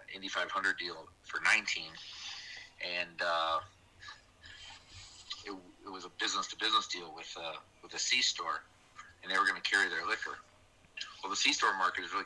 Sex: male